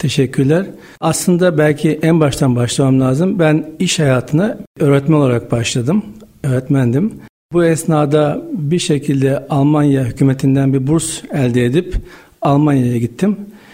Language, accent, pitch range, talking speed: Turkish, native, 135-165 Hz, 115 wpm